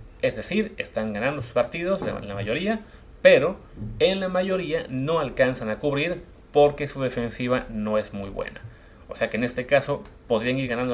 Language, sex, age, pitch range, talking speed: Spanish, male, 30-49, 105-140 Hz, 175 wpm